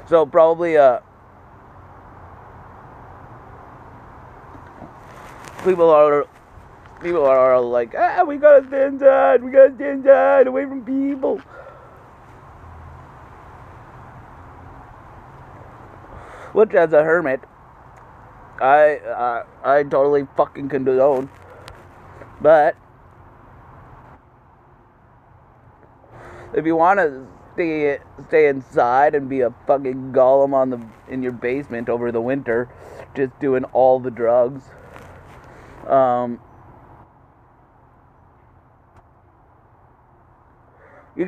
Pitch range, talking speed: 115-145 Hz, 85 wpm